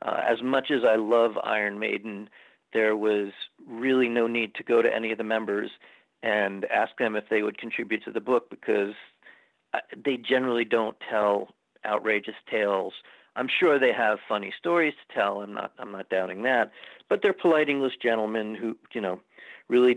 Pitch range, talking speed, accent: 105-125 Hz, 180 wpm, American